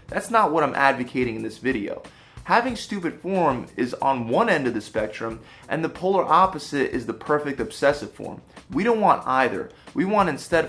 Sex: male